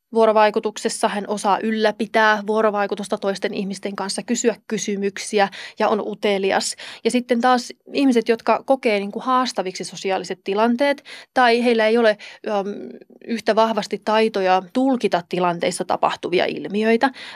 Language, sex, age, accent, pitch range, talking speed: Finnish, female, 30-49, native, 195-230 Hz, 115 wpm